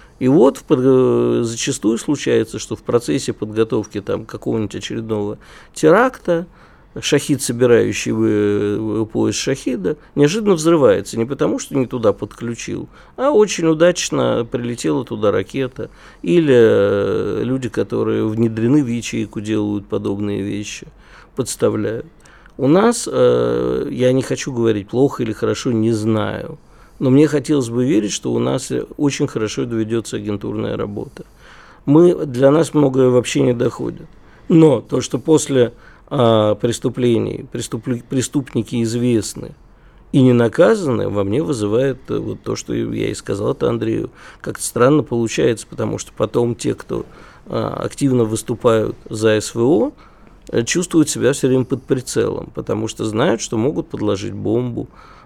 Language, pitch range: Russian, 110-140 Hz